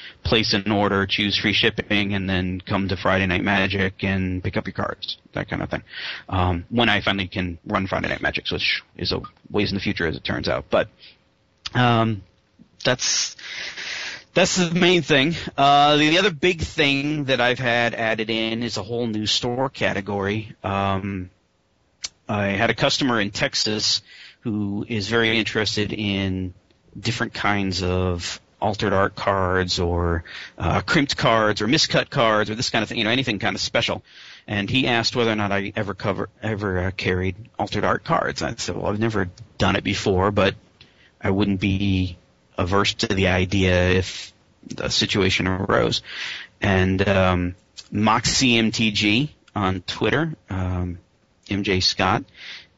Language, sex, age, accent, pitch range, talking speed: English, male, 30-49, American, 95-115 Hz, 165 wpm